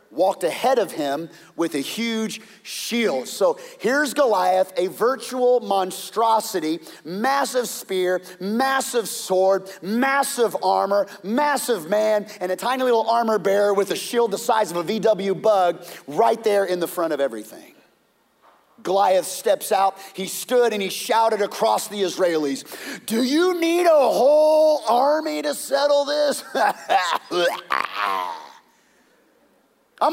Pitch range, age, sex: 185-275 Hz, 30-49, male